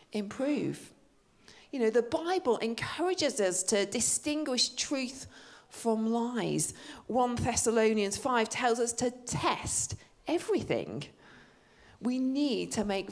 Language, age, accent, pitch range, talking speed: English, 40-59, British, 190-250 Hz, 110 wpm